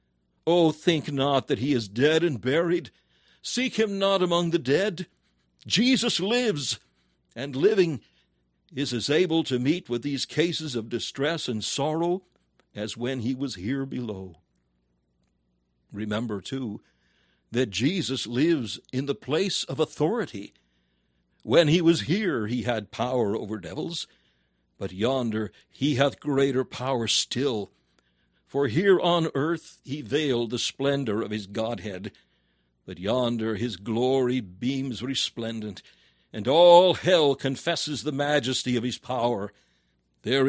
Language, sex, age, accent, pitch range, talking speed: English, male, 60-79, American, 105-155 Hz, 135 wpm